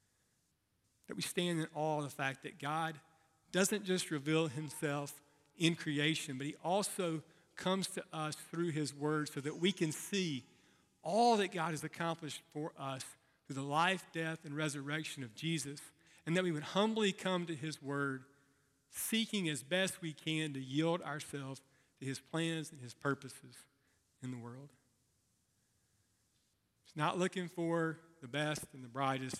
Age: 40-59